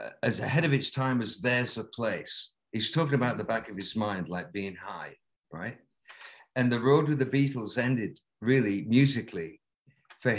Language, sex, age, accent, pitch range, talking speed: English, male, 50-69, British, 115-150 Hz, 180 wpm